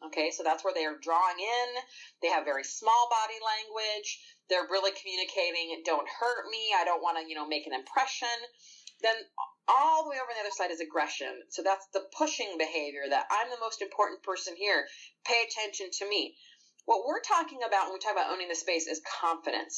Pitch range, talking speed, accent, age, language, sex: 165-245 Hz, 210 wpm, American, 30-49, English, female